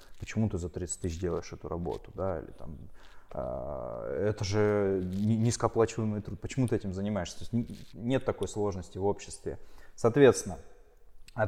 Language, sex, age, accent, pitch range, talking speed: Russian, male, 20-39, native, 100-120 Hz, 150 wpm